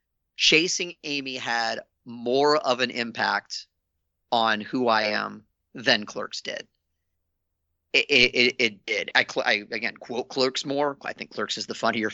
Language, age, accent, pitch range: English, 30-49, American, 85-140 Hz